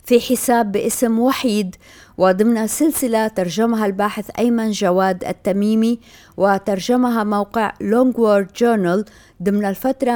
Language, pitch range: Arabic, 185-225 Hz